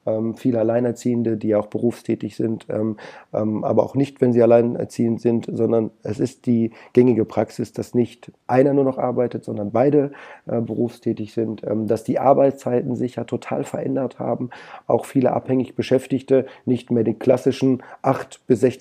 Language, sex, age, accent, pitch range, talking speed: German, male, 30-49, German, 110-125 Hz, 150 wpm